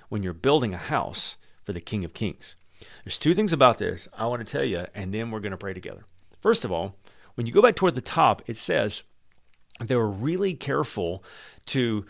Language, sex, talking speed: English, male, 220 wpm